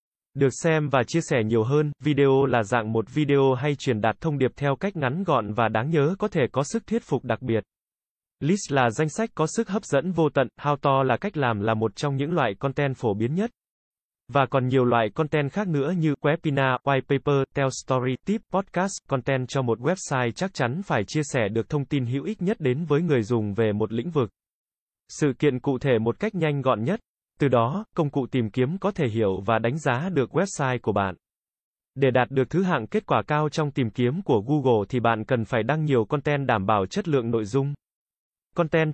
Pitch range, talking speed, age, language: 125-155 Hz, 225 wpm, 20-39, Vietnamese